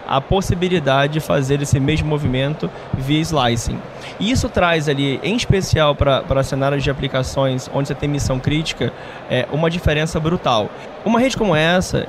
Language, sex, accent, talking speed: Portuguese, male, Brazilian, 160 wpm